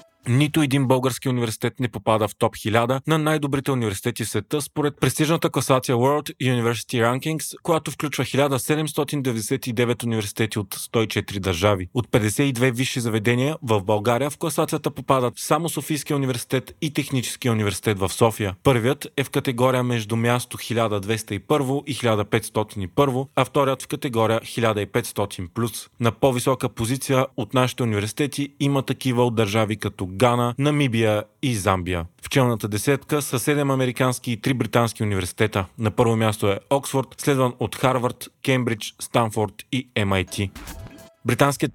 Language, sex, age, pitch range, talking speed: Bulgarian, male, 30-49, 115-140 Hz, 135 wpm